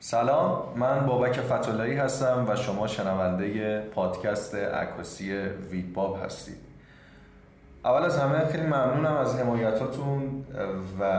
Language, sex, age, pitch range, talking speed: Persian, male, 30-49, 100-120 Hz, 105 wpm